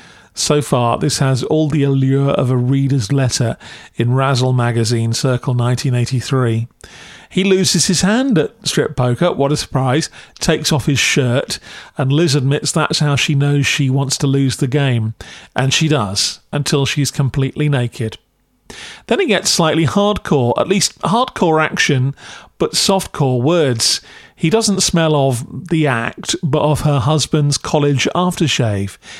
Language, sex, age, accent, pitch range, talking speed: English, male, 40-59, British, 125-155 Hz, 150 wpm